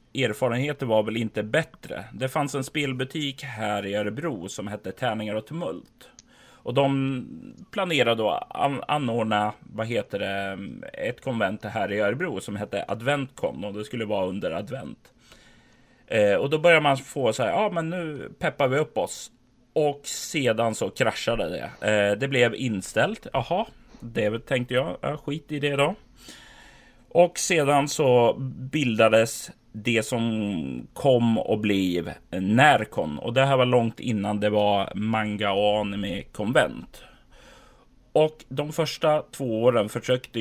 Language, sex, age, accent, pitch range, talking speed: Swedish, male, 30-49, native, 105-145 Hz, 155 wpm